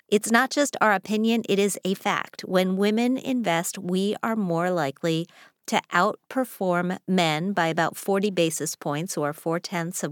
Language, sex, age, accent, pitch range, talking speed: English, female, 40-59, American, 160-205 Hz, 160 wpm